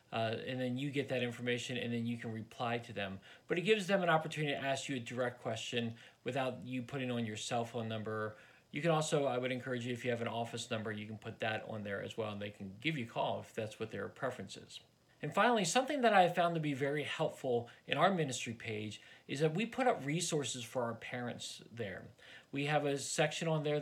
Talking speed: 250 wpm